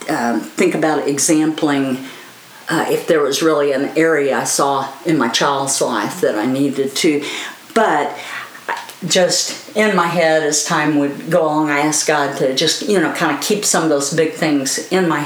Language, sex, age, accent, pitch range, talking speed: English, female, 50-69, American, 150-195 Hz, 190 wpm